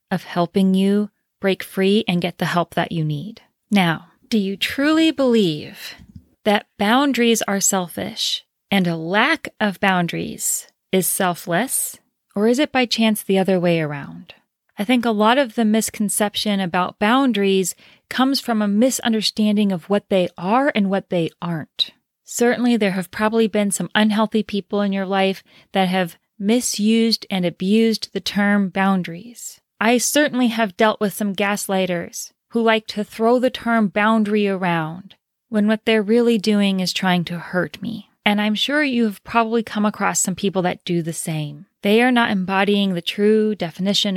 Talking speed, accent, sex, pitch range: 165 wpm, American, female, 190-225 Hz